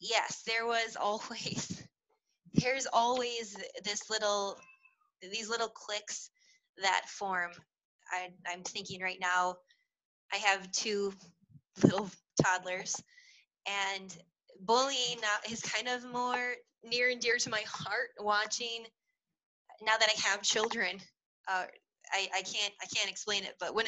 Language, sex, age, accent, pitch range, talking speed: English, female, 20-39, American, 195-235 Hz, 130 wpm